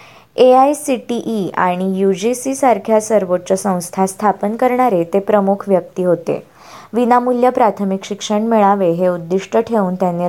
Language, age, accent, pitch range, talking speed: Marathi, 20-39, native, 185-225 Hz, 150 wpm